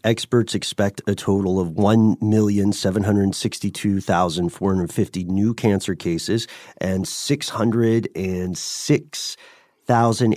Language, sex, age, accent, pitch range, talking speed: English, male, 40-59, American, 95-115 Hz, 135 wpm